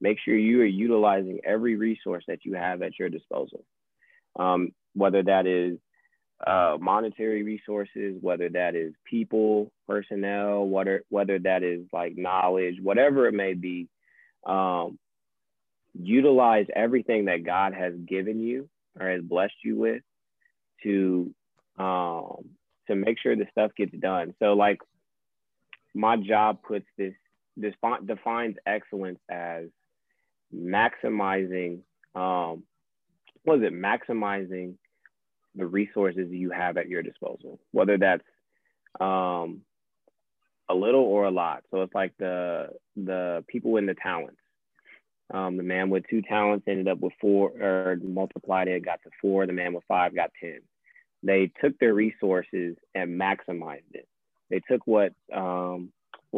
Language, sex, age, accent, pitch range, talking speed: English, male, 20-39, American, 90-105 Hz, 140 wpm